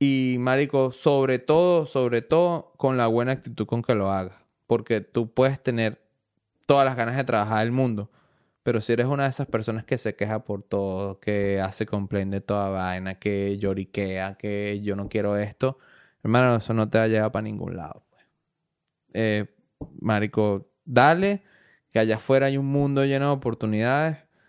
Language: Spanish